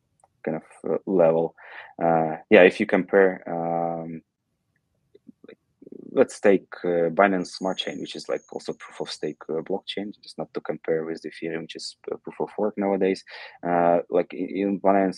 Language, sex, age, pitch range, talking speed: English, male, 20-39, 85-95 Hz, 160 wpm